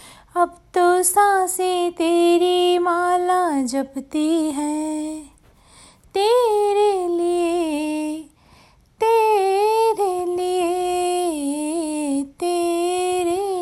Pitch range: 295-360 Hz